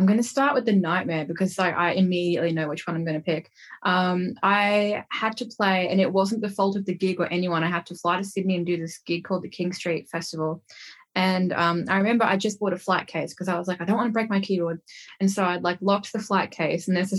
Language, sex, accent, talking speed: English, female, Australian, 275 wpm